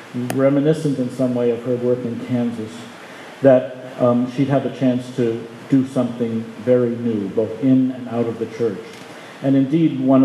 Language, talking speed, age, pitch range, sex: English, 175 wpm, 50-69, 115-135 Hz, male